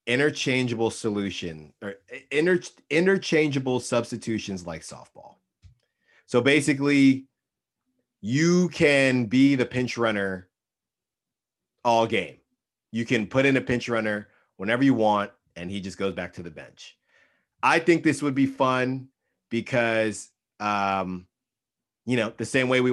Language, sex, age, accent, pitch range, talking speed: English, male, 30-49, American, 110-130 Hz, 130 wpm